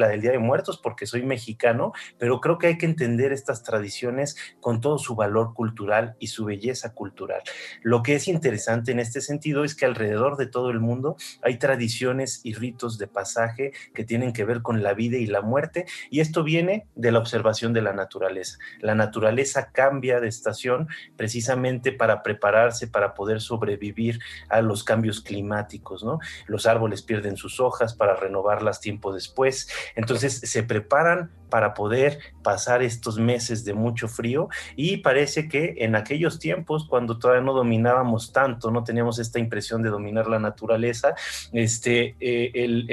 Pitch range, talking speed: 110-130 Hz, 170 wpm